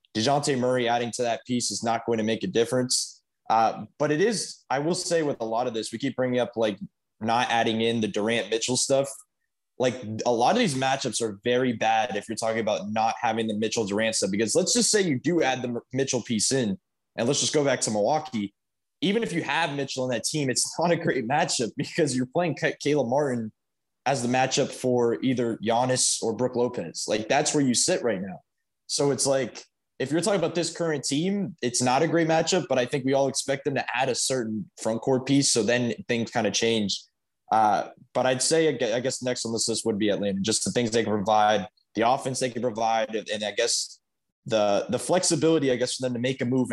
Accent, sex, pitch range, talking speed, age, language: American, male, 115-135 Hz, 235 wpm, 20-39, English